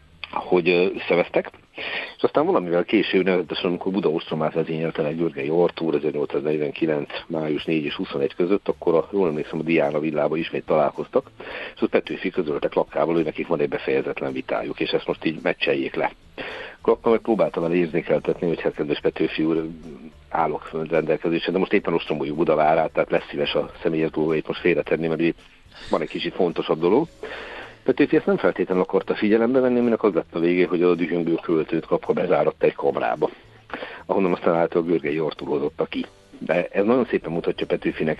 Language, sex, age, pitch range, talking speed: Hungarian, male, 60-79, 80-115 Hz, 175 wpm